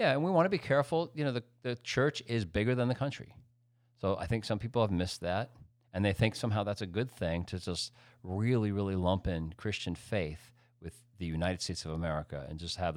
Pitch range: 90-120 Hz